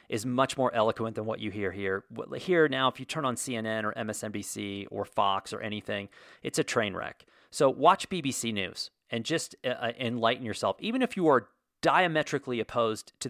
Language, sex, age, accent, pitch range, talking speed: English, male, 40-59, American, 110-150 Hz, 185 wpm